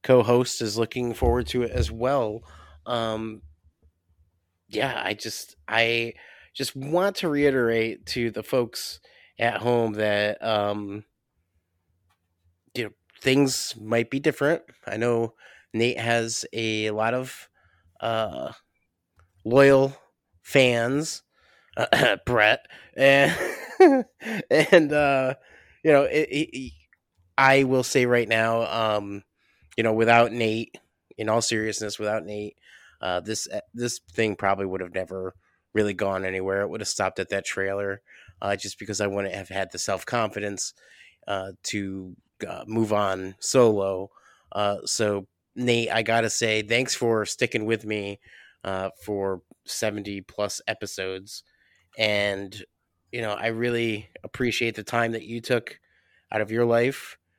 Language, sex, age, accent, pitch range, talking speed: English, male, 30-49, American, 95-120 Hz, 135 wpm